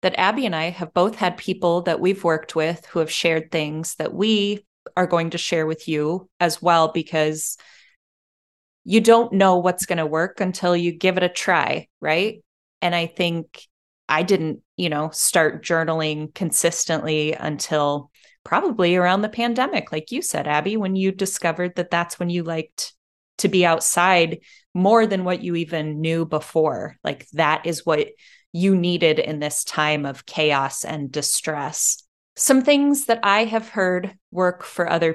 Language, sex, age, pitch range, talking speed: English, female, 20-39, 160-190 Hz, 170 wpm